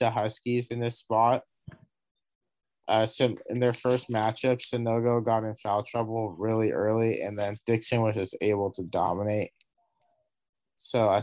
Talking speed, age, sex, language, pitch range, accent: 150 wpm, 30-49, male, English, 105-125 Hz, American